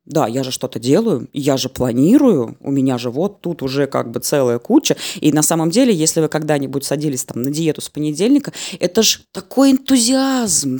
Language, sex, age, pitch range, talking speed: Russian, female, 20-39, 140-185 Hz, 195 wpm